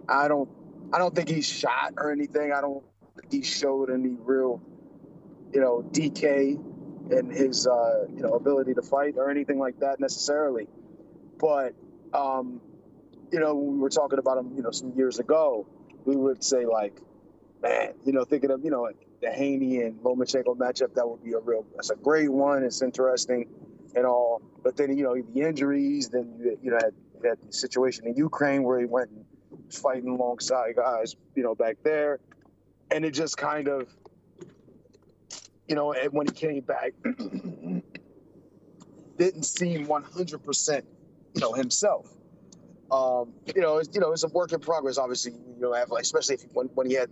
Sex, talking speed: male, 180 wpm